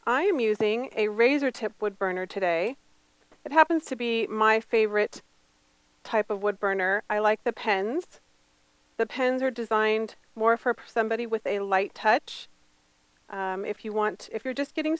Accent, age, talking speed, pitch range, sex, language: American, 30-49, 170 wpm, 180-235 Hz, female, English